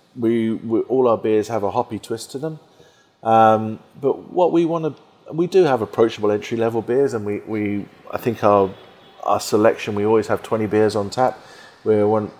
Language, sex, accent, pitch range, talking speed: English, male, British, 95-115 Hz, 195 wpm